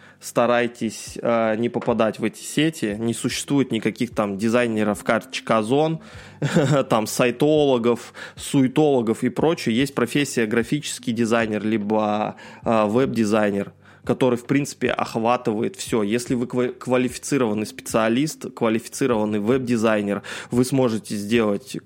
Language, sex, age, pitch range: Russian, male, 20-39, 110-130 Hz